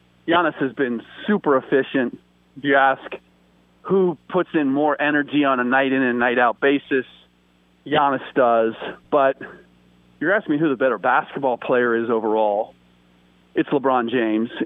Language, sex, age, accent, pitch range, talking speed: English, male, 40-59, American, 105-140 Hz, 140 wpm